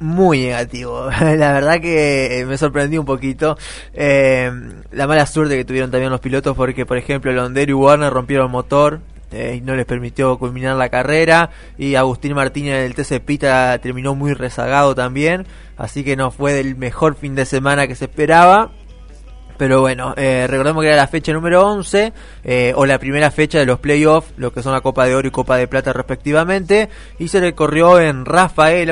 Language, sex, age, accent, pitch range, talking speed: Spanish, male, 20-39, Argentinian, 125-150 Hz, 190 wpm